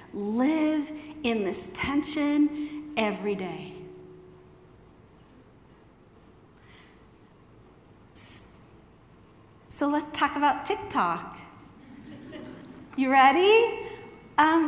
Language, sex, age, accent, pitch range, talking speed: English, female, 50-69, American, 195-270 Hz, 55 wpm